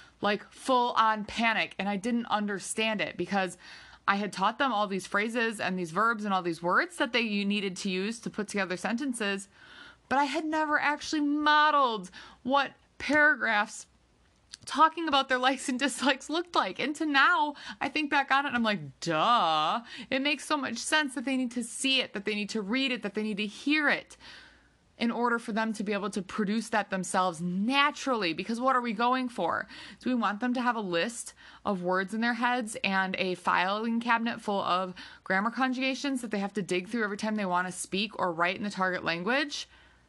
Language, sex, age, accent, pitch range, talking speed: English, female, 20-39, American, 200-265 Hz, 210 wpm